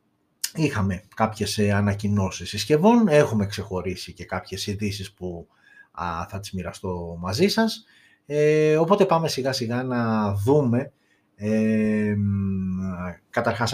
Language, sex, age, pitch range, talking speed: Greek, male, 30-49, 105-145 Hz, 95 wpm